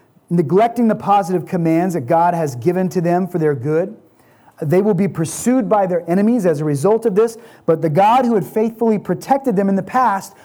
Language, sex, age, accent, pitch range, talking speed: English, male, 30-49, American, 170-215 Hz, 205 wpm